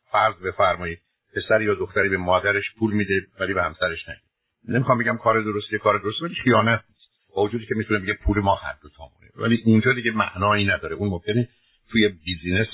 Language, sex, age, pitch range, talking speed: Persian, male, 50-69, 90-115 Hz, 195 wpm